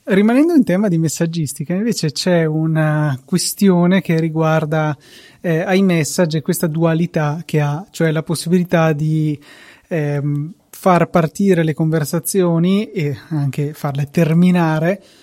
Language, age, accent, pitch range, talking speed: Italian, 20-39, native, 155-195 Hz, 120 wpm